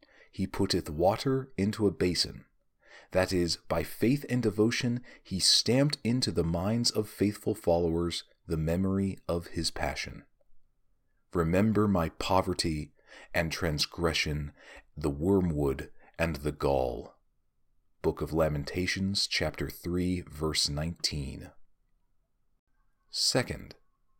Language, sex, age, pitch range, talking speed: English, male, 40-59, 80-115 Hz, 105 wpm